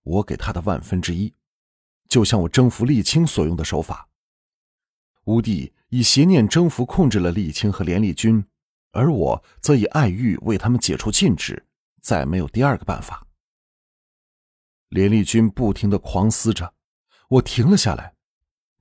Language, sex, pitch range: Chinese, male, 85-125 Hz